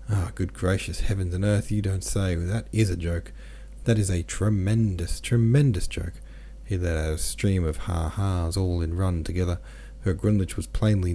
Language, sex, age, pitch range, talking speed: English, male, 40-59, 85-115 Hz, 190 wpm